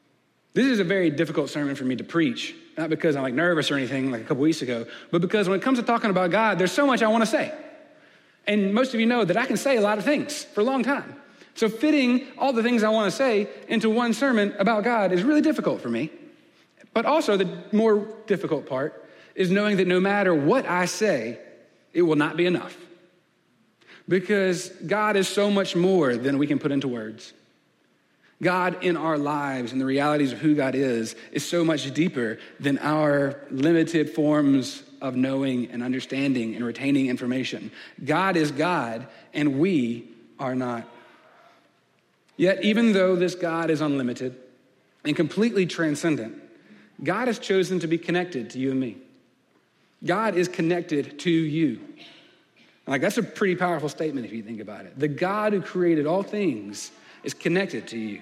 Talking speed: 190 wpm